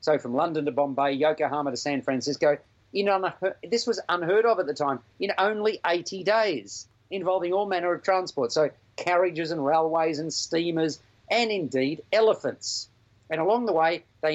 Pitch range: 140-185 Hz